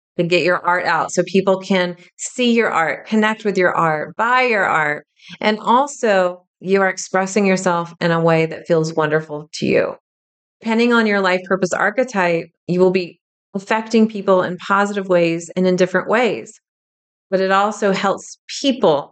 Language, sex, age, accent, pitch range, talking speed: English, female, 30-49, American, 165-190 Hz, 175 wpm